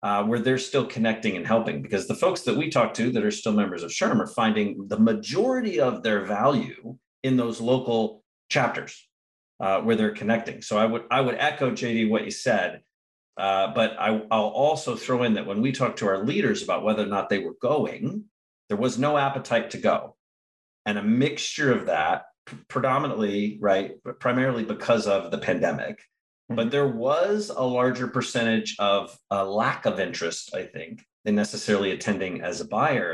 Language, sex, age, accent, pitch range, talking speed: English, male, 40-59, American, 105-130 Hz, 190 wpm